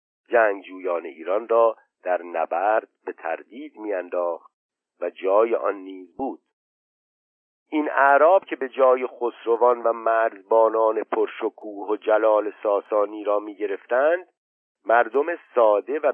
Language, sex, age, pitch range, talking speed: Persian, male, 50-69, 110-155 Hz, 115 wpm